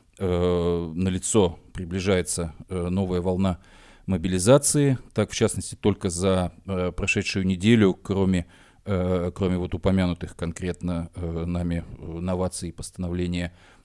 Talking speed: 90 wpm